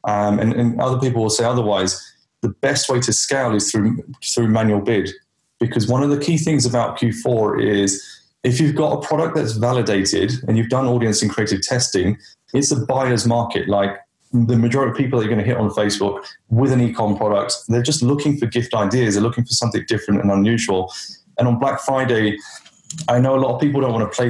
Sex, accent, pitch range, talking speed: male, British, 105-130 Hz, 215 wpm